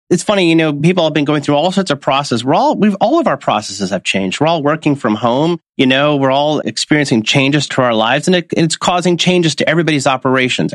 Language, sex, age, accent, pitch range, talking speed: English, male, 30-49, American, 115-165 Hz, 245 wpm